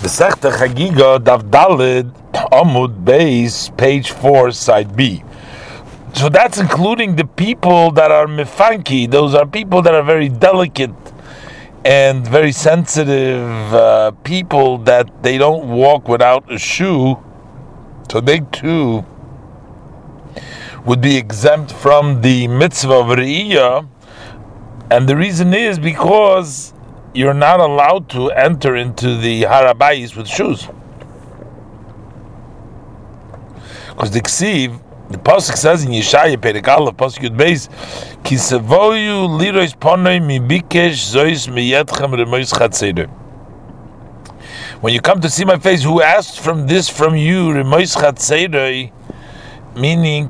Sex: male